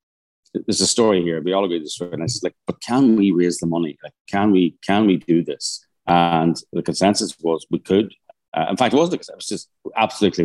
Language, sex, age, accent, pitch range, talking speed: English, male, 30-49, British, 80-90 Hz, 240 wpm